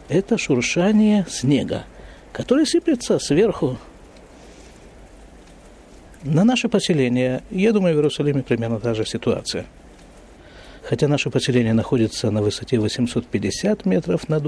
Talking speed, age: 110 wpm, 50-69